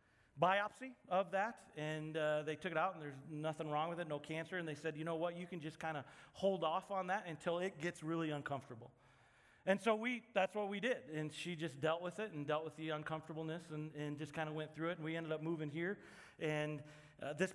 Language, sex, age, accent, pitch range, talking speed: English, male, 40-59, American, 150-185 Hz, 245 wpm